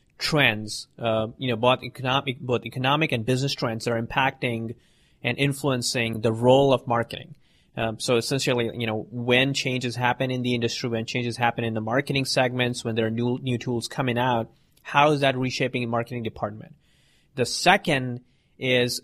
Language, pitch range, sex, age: English, 120-140 Hz, male, 30-49